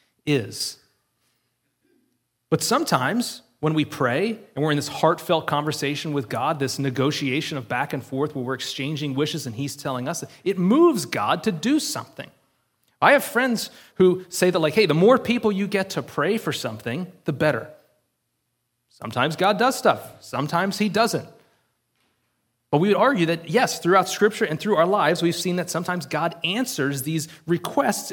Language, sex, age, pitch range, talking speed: English, male, 30-49, 140-185 Hz, 170 wpm